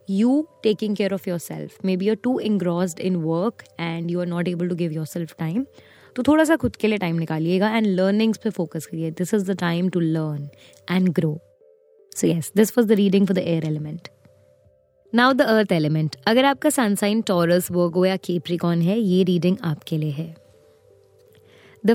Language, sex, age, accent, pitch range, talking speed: Hindi, female, 20-39, native, 170-220 Hz, 170 wpm